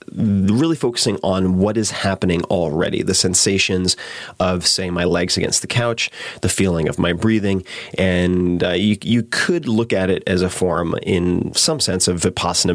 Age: 30-49